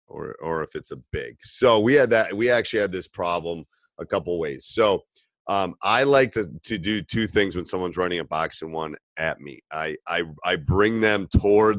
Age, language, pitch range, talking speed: 30-49, English, 85-110 Hz, 215 wpm